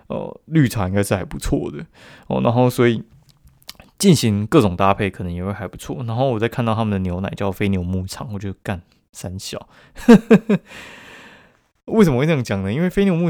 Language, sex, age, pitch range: Chinese, male, 20-39, 100-125 Hz